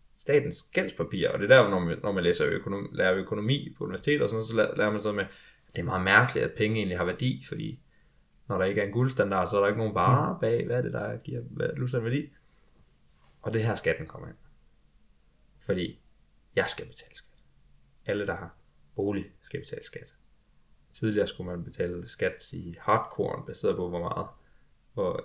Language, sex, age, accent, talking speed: Danish, male, 20-39, native, 195 wpm